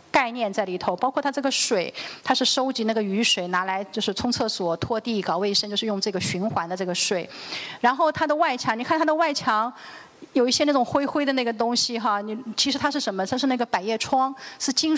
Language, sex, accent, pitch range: Chinese, female, native, 190-255 Hz